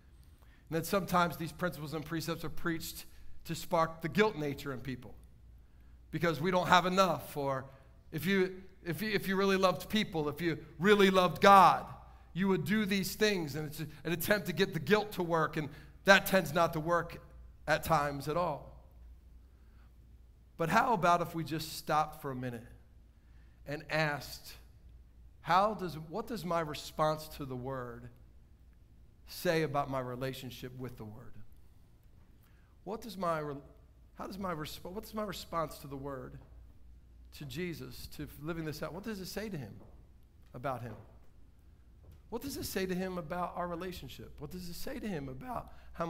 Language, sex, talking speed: English, male, 175 wpm